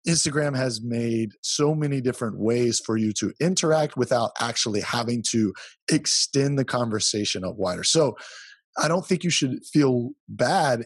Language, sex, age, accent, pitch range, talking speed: English, male, 30-49, American, 110-130 Hz, 155 wpm